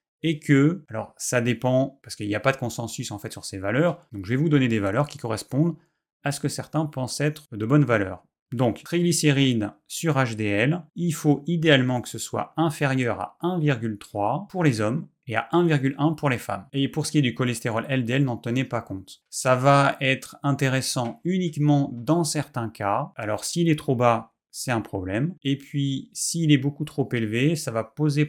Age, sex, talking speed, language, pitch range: 30-49, male, 200 wpm, French, 115-145 Hz